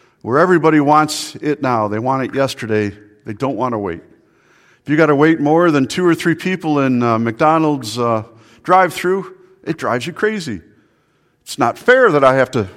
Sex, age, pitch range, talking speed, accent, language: male, 50-69, 115-160 Hz, 195 wpm, American, English